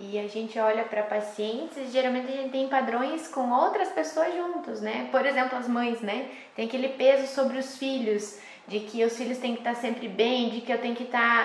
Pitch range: 250-335 Hz